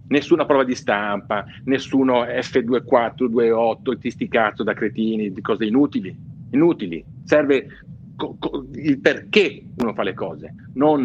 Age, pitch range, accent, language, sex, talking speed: 50-69, 120-185 Hz, native, Italian, male, 120 wpm